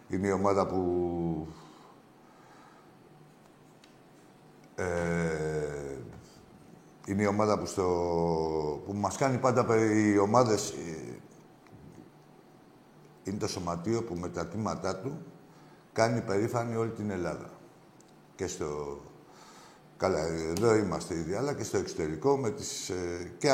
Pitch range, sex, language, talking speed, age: 95-130 Hz, male, Greek, 115 wpm, 60-79